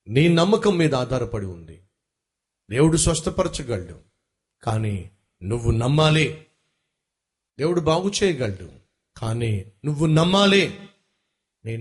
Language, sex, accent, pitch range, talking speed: Telugu, male, native, 110-165 Hz, 85 wpm